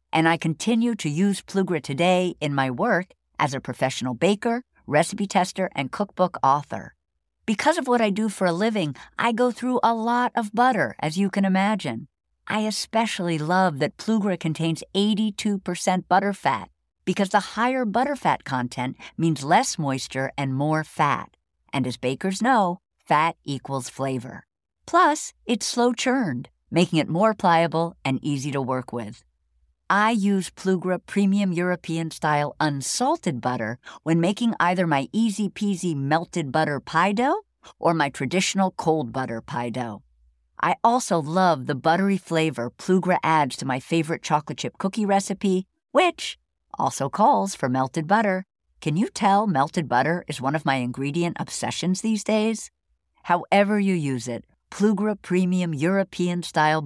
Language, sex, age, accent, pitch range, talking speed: English, female, 50-69, American, 145-205 Hz, 150 wpm